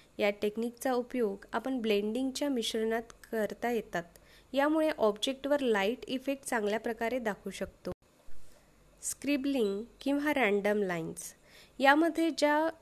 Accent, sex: native, female